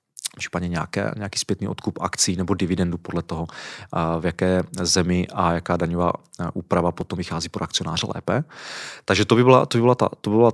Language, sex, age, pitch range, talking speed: Czech, male, 30-49, 90-110 Hz, 180 wpm